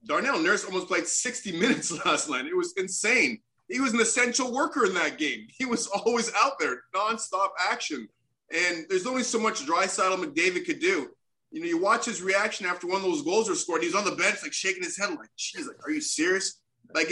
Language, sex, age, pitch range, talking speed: English, male, 30-49, 150-255 Hz, 220 wpm